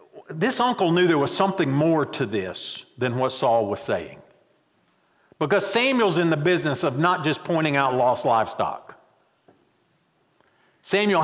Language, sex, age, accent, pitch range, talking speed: English, male, 50-69, American, 125-175 Hz, 145 wpm